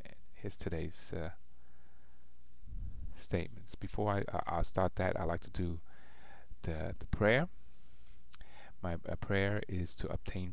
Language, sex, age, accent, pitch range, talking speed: English, male, 40-59, American, 65-95 Hz, 125 wpm